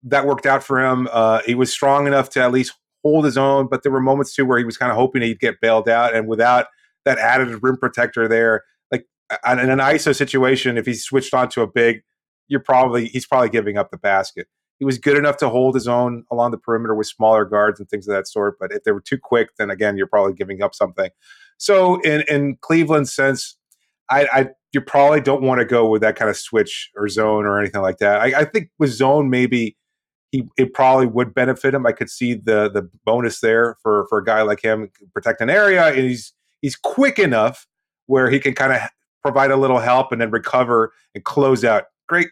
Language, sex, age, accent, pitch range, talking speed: English, male, 30-49, American, 115-135 Hz, 230 wpm